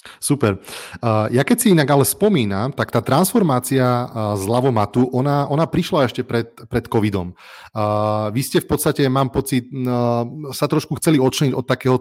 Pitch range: 120-140 Hz